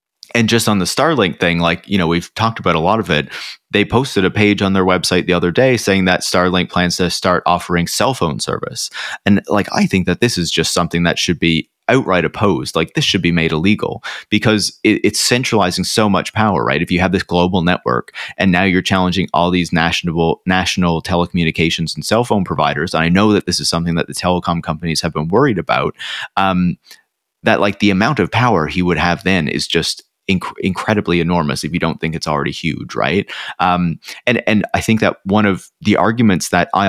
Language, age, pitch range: English, 30-49, 85-100 Hz